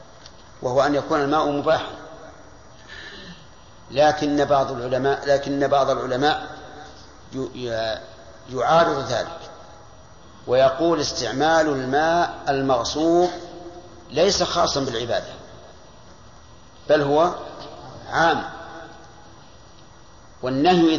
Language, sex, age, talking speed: Arabic, male, 50-69, 70 wpm